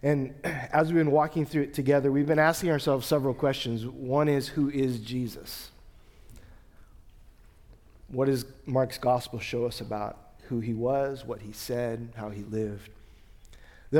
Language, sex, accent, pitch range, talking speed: English, male, American, 120-160 Hz, 155 wpm